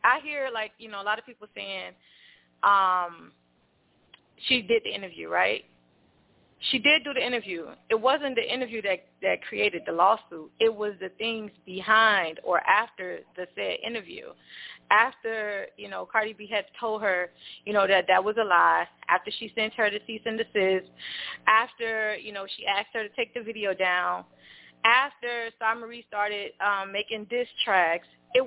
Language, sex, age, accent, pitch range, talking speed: English, female, 20-39, American, 195-250 Hz, 175 wpm